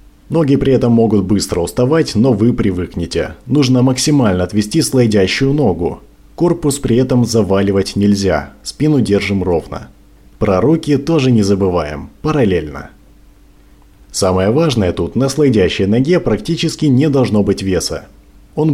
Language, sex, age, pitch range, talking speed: Russian, male, 20-39, 100-140 Hz, 130 wpm